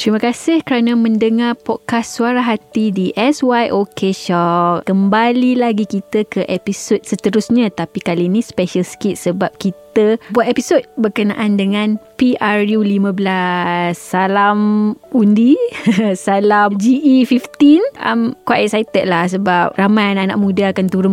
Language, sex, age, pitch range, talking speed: Malay, female, 20-39, 185-225 Hz, 120 wpm